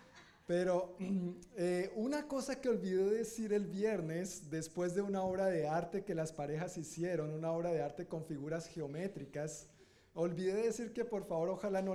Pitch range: 155-195 Hz